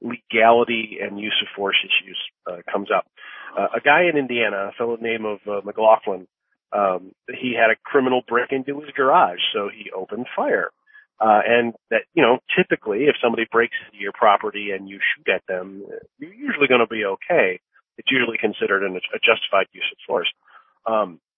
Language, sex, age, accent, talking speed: English, male, 40-59, American, 180 wpm